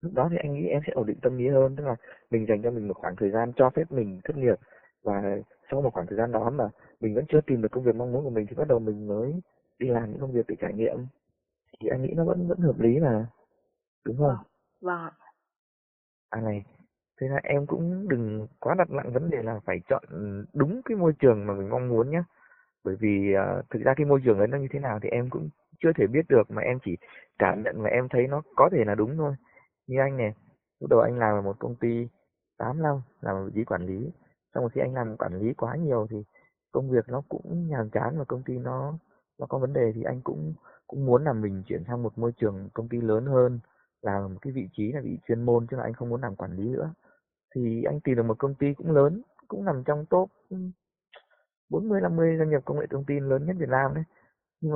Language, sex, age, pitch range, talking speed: Vietnamese, male, 20-39, 110-150 Hz, 255 wpm